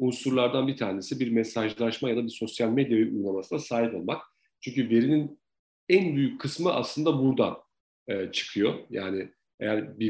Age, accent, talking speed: 40-59, native, 150 wpm